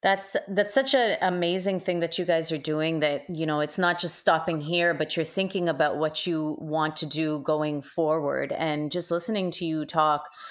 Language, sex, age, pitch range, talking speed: English, female, 30-49, 160-195 Hz, 205 wpm